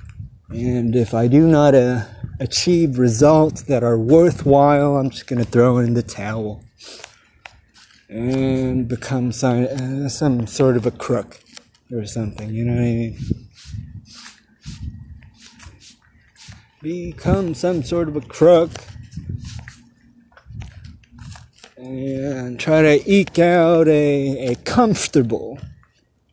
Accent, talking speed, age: American, 110 wpm, 30-49